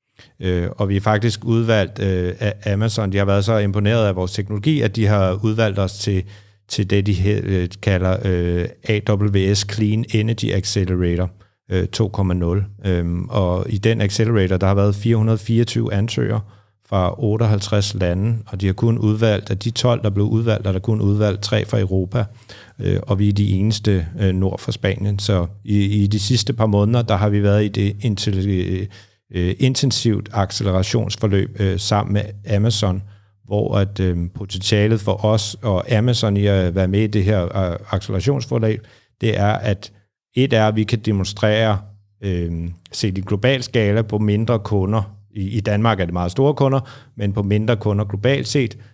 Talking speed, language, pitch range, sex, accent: 180 wpm, Danish, 95-110 Hz, male, native